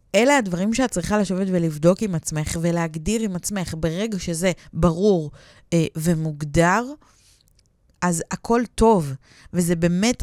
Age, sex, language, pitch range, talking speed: 20-39, female, Hebrew, 160-195 Hz, 125 wpm